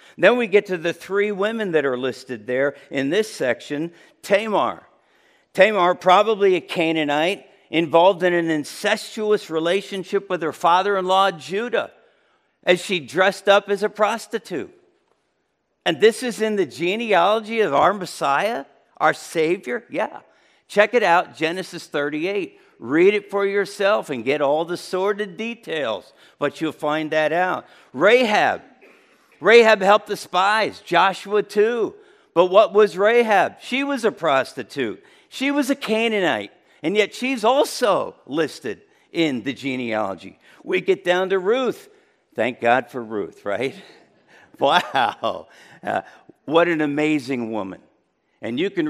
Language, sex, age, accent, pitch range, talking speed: English, male, 50-69, American, 165-230 Hz, 140 wpm